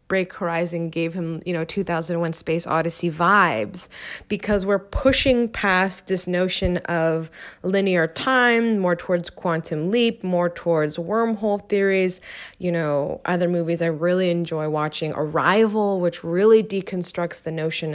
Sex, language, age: female, English, 20-39